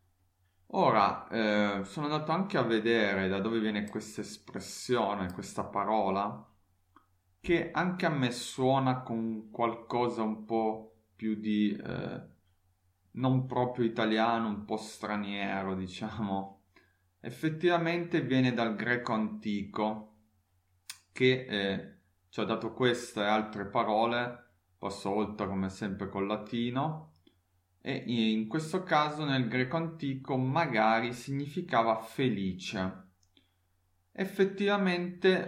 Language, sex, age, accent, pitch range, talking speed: Italian, male, 30-49, native, 100-130 Hz, 110 wpm